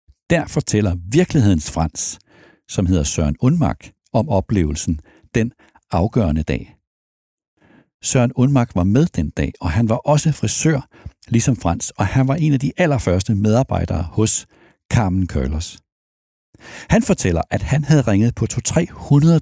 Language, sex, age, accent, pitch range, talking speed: Danish, male, 60-79, native, 90-145 Hz, 140 wpm